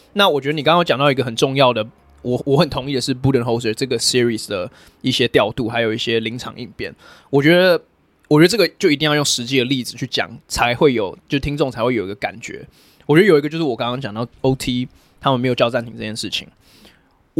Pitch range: 120-145 Hz